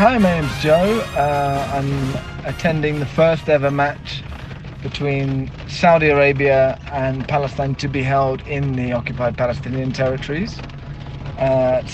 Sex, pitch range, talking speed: male, 135-160 Hz, 125 wpm